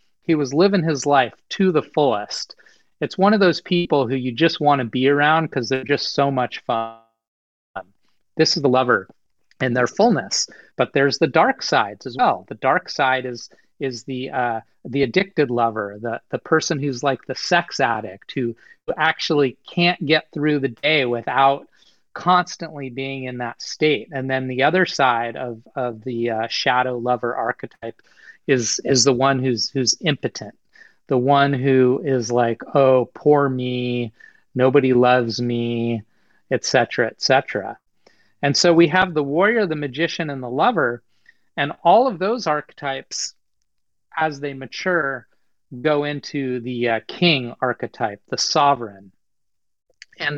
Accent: American